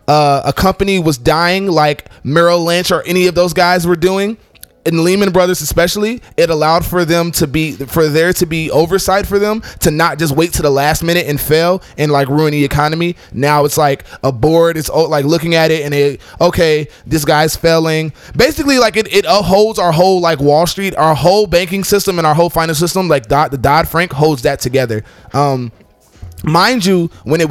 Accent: American